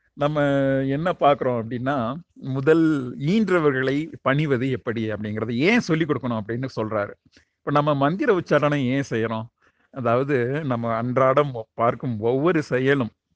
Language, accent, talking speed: Tamil, native, 115 wpm